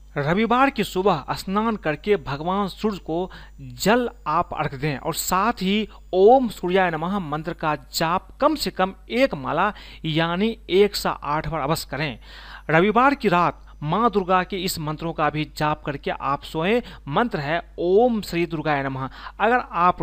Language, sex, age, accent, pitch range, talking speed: Hindi, male, 40-59, native, 155-210 Hz, 165 wpm